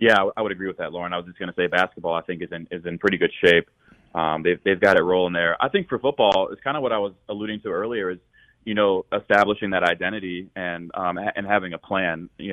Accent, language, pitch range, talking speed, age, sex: American, English, 85-95 Hz, 270 wpm, 20-39, male